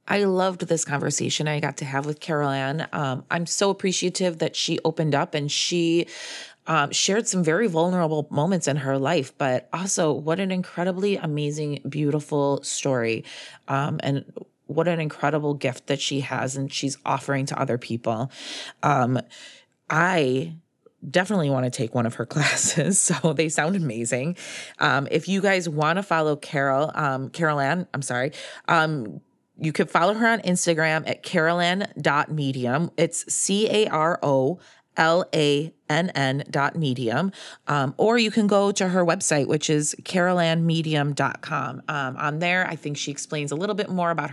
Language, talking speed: English, 155 wpm